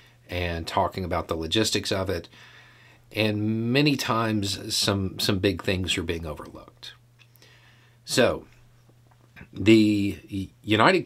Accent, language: American, English